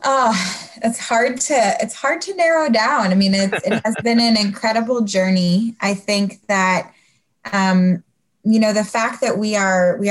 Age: 20-39